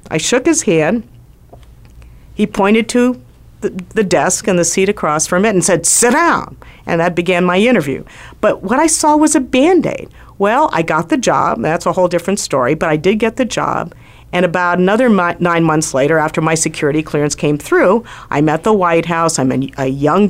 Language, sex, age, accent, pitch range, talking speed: English, female, 50-69, American, 150-200 Hz, 205 wpm